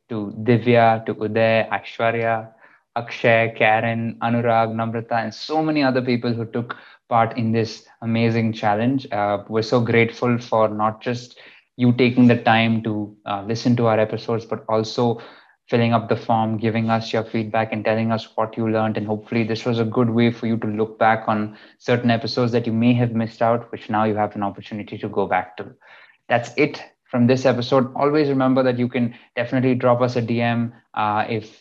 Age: 20-39